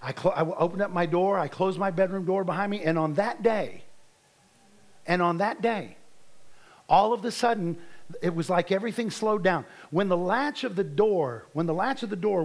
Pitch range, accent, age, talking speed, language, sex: 165-205 Hz, American, 50-69, 205 wpm, English, male